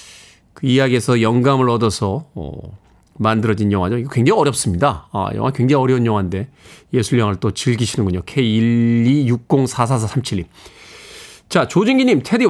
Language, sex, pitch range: Korean, male, 130-170 Hz